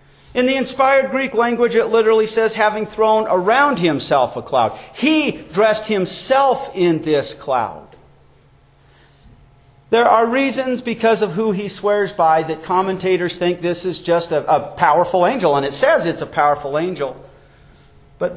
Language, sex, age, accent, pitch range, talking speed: English, male, 50-69, American, 145-210 Hz, 155 wpm